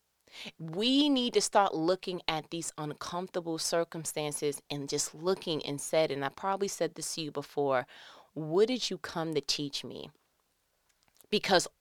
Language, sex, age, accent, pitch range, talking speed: English, female, 30-49, American, 155-200 Hz, 150 wpm